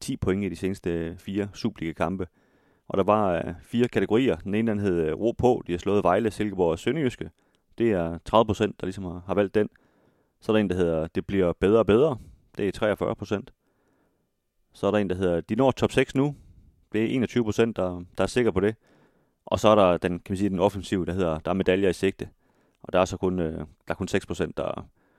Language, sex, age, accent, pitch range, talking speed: Danish, male, 30-49, native, 90-110 Hz, 240 wpm